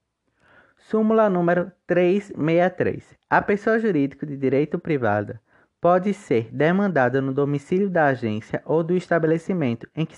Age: 20-39